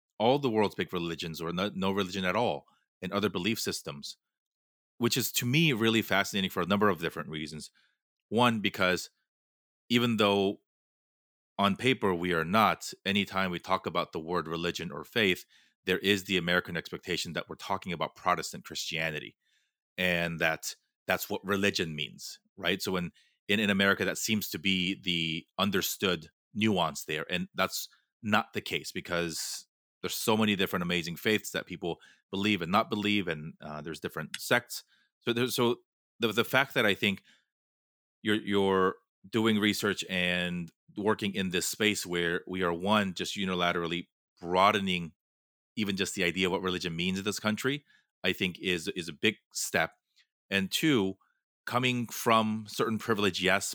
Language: English